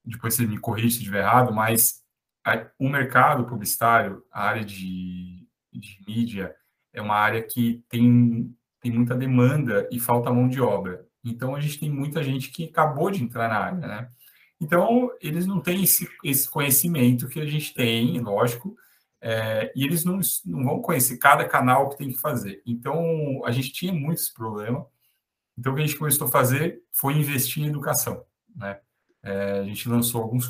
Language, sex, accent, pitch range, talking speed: Portuguese, male, Brazilian, 115-145 Hz, 180 wpm